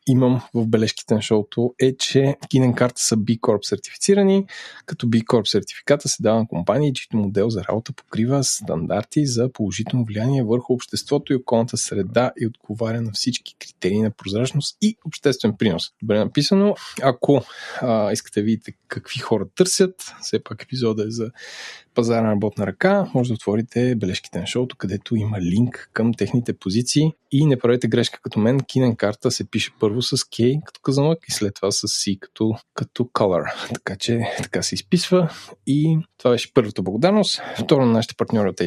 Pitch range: 110-140 Hz